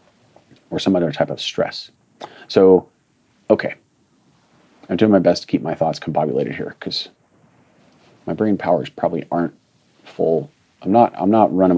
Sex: male